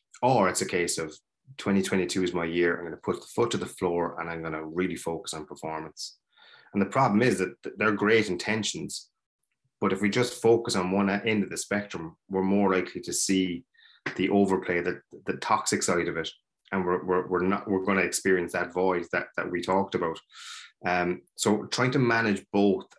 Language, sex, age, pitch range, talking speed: English, male, 30-49, 85-100 Hz, 205 wpm